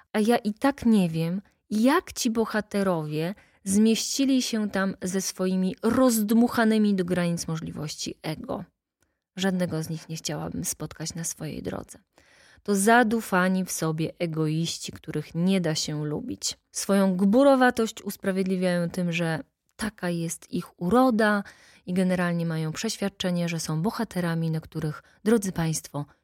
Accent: native